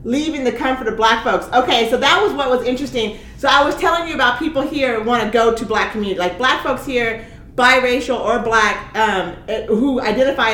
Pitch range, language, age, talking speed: 190-245 Hz, English, 40-59, 215 wpm